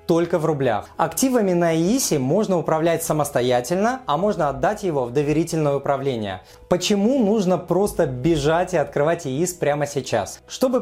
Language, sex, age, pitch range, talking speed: Russian, male, 20-39, 150-195 Hz, 145 wpm